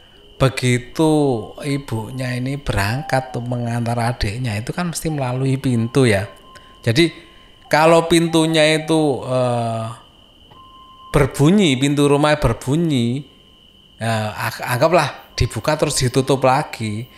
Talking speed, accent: 100 wpm, native